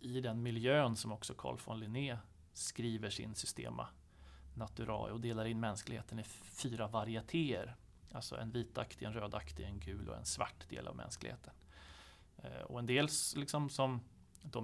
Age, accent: 30-49, native